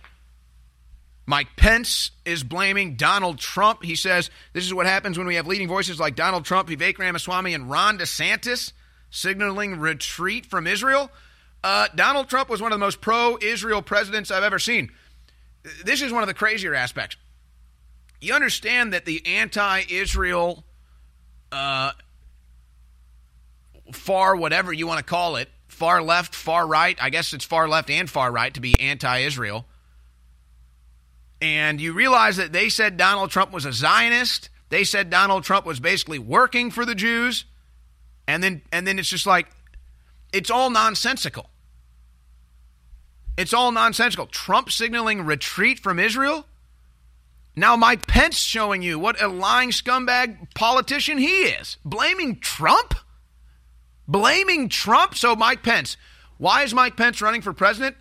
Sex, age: male, 30-49